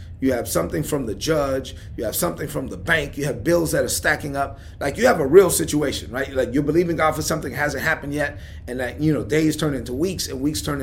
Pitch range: 125-180 Hz